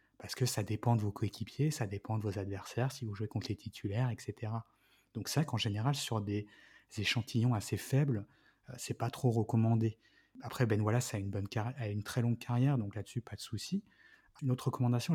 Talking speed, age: 220 wpm, 30-49